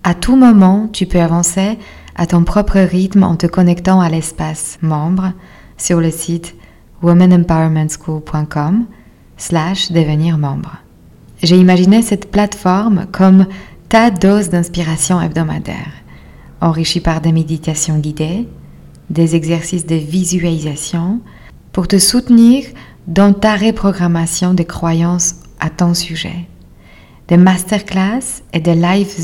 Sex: female